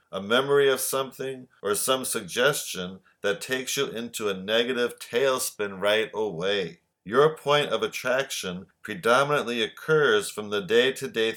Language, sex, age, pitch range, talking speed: English, male, 50-69, 110-155 Hz, 130 wpm